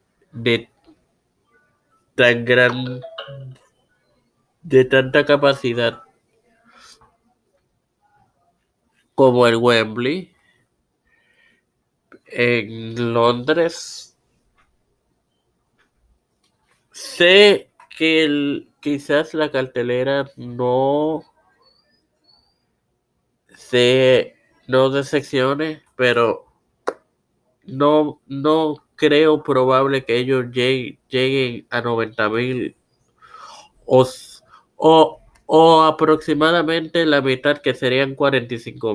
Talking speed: 65 wpm